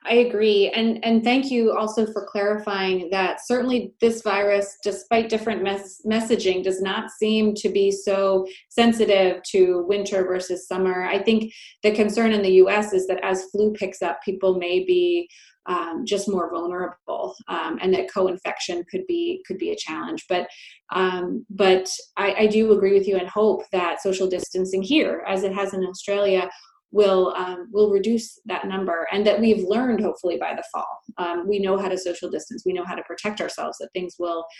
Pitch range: 185-215 Hz